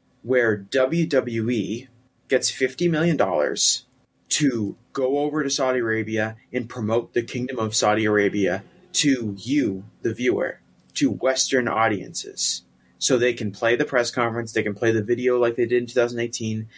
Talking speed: 150 wpm